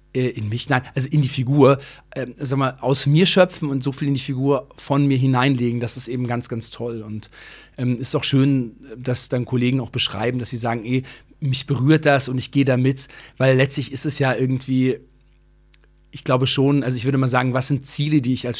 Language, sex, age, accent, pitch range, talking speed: German, male, 40-59, German, 125-140 Hz, 225 wpm